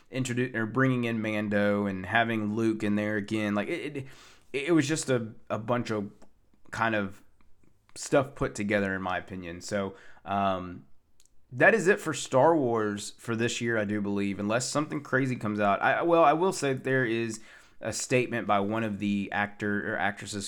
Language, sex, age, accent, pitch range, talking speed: English, male, 20-39, American, 100-115 Hz, 190 wpm